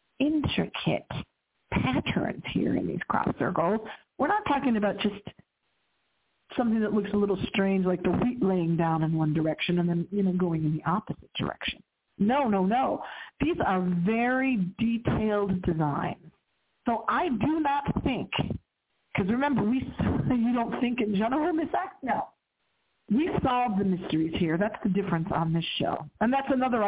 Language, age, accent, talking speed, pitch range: English, 50-69, American, 165 wpm, 175-220 Hz